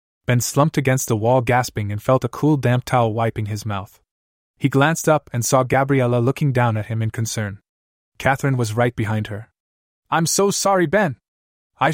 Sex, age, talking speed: male, 20-39, 185 wpm